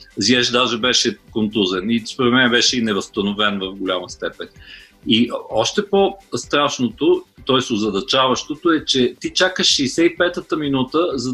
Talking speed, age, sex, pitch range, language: 125 wpm, 40-59, male, 120-170 Hz, Bulgarian